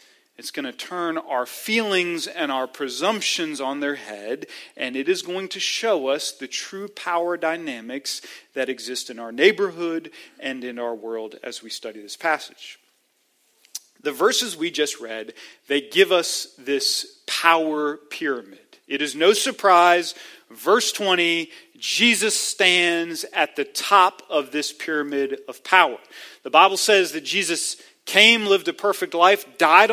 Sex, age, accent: male, 40-59, American